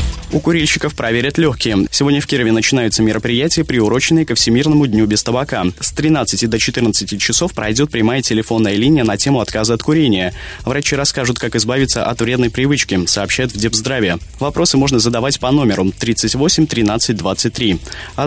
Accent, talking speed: native, 160 wpm